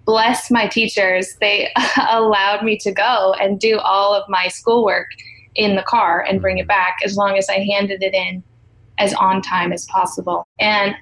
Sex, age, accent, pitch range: female, 20-39, American, 195-230 Hz